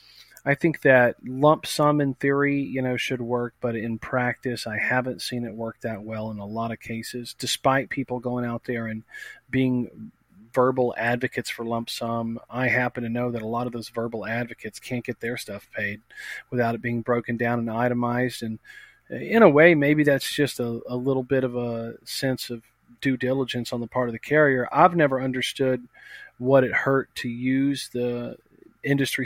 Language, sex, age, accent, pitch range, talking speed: English, male, 40-59, American, 120-135 Hz, 195 wpm